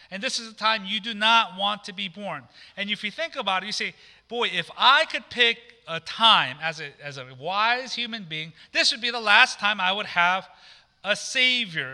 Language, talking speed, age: English, 225 wpm, 40-59